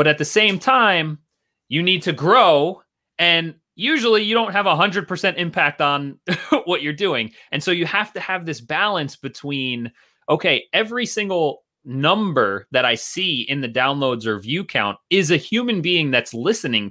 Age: 30-49